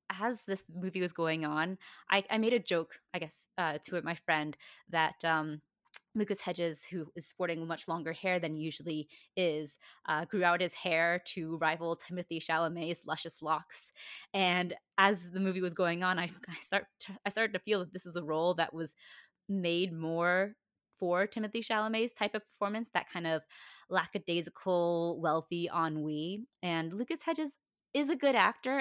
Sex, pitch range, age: female, 165-205 Hz, 20-39